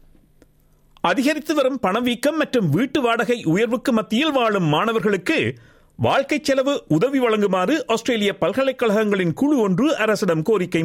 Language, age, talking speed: Tamil, 50-69, 110 wpm